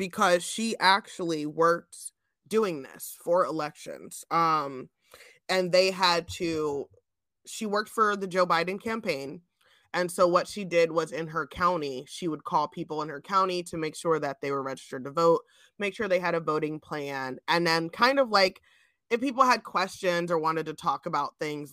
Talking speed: 185 wpm